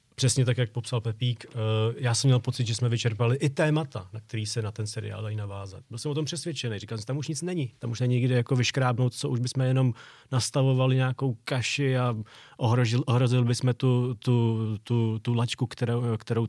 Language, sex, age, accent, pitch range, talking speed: Czech, male, 30-49, native, 110-125 Hz, 210 wpm